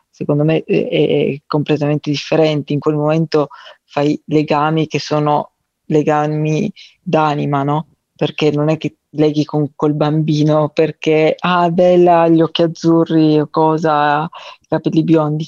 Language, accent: Italian, native